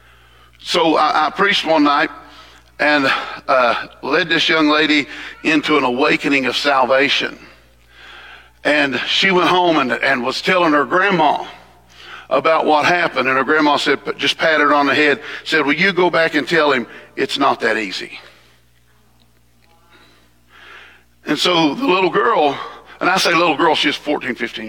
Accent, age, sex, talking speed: American, 50-69, male, 160 wpm